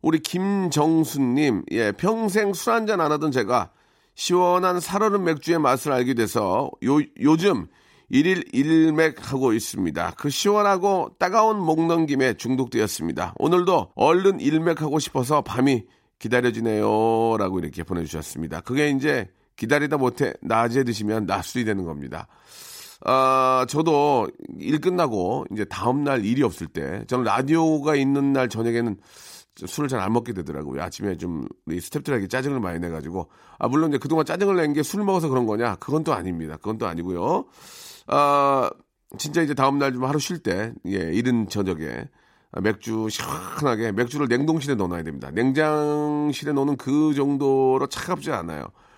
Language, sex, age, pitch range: Korean, male, 40-59, 110-160 Hz